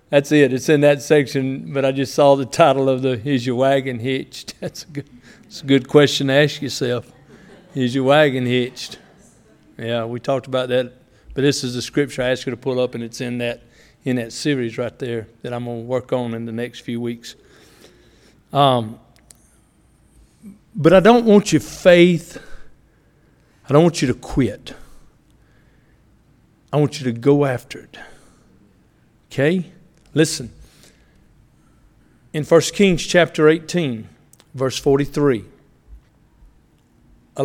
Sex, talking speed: male, 155 wpm